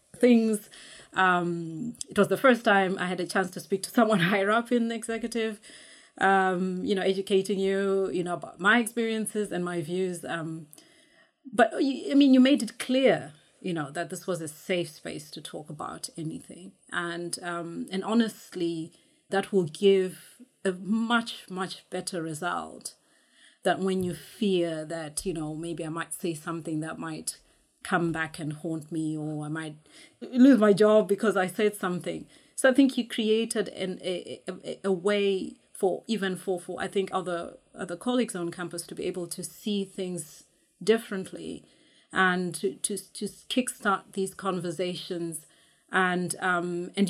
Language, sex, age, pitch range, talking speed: English, female, 30-49, 170-210 Hz, 170 wpm